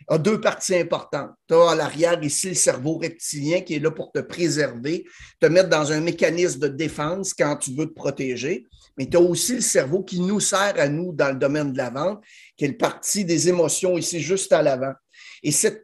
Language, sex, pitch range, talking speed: French, male, 150-185 Hz, 225 wpm